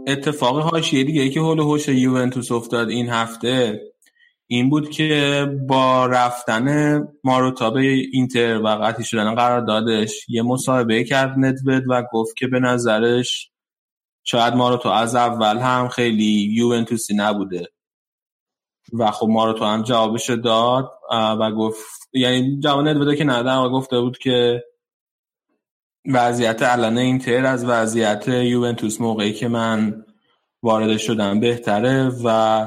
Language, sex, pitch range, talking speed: Persian, male, 110-130 Hz, 135 wpm